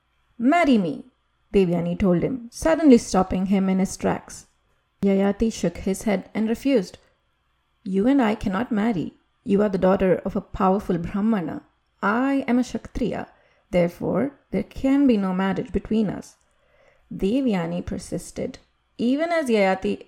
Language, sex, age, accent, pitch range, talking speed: English, female, 30-49, Indian, 190-255 Hz, 140 wpm